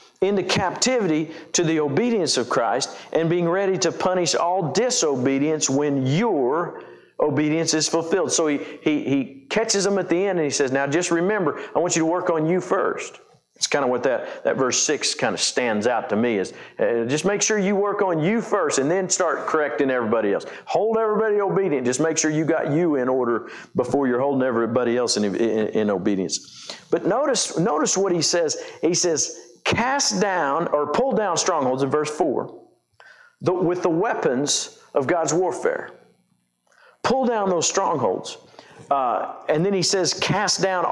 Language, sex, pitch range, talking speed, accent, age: English, male, 135-195 Hz, 185 wpm, American, 50-69